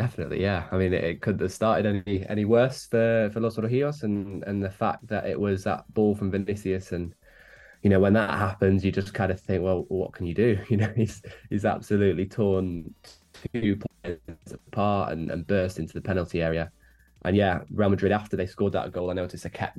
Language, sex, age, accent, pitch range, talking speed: English, male, 10-29, British, 90-105 Hz, 215 wpm